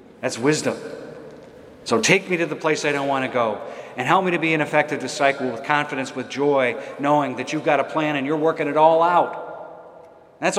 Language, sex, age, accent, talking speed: English, male, 40-59, American, 215 wpm